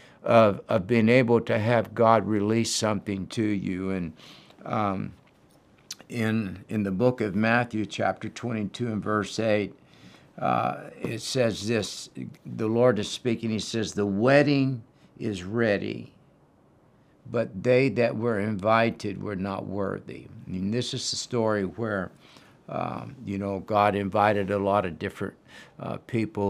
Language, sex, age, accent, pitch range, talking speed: English, male, 60-79, American, 100-115 Hz, 145 wpm